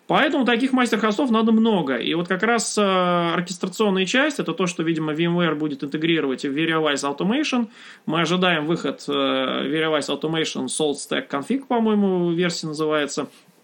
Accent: native